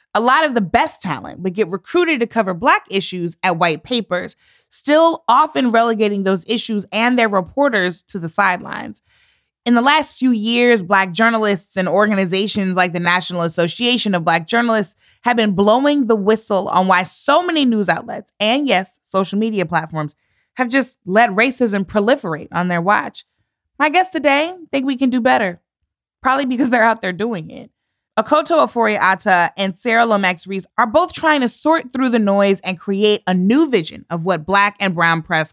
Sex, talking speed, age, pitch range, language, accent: female, 180 wpm, 20-39, 185-240 Hz, English, American